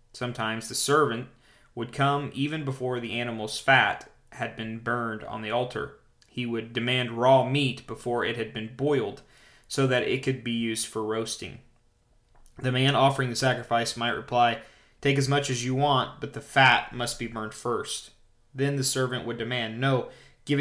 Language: English